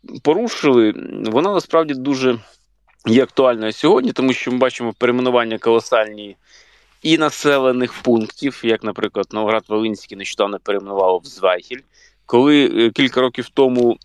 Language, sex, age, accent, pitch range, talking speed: Ukrainian, male, 20-39, native, 110-135 Hz, 120 wpm